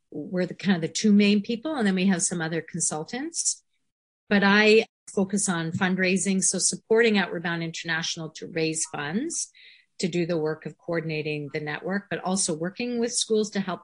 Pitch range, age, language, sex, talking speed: 160-195 Hz, 40-59, English, female, 185 wpm